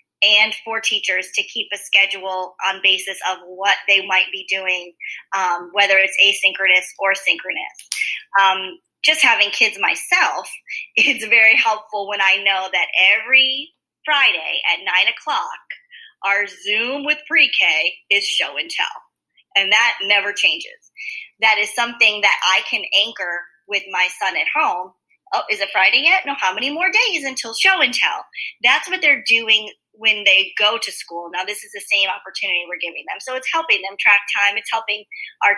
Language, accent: English, American